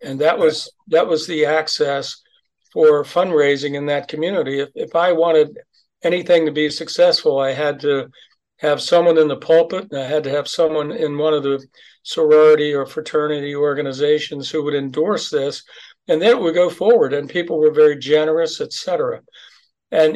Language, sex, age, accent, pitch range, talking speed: English, male, 60-79, American, 145-205 Hz, 180 wpm